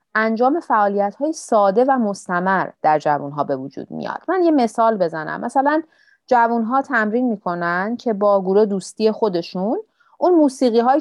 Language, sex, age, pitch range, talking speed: Persian, female, 30-49, 180-245 Hz, 155 wpm